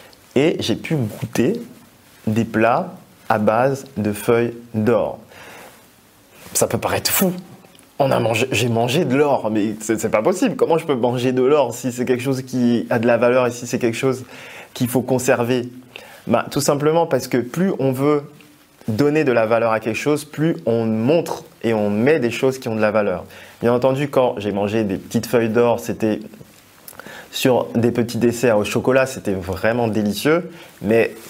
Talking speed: 190 wpm